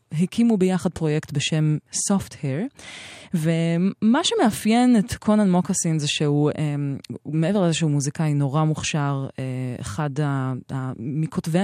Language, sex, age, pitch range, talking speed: Hebrew, female, 20-39, 145-190 Hz, 100 wpm